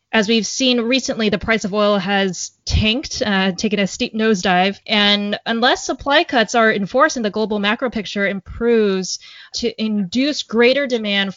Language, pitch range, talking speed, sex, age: English, 195-235 Hz, 165 wpm, female, 20-39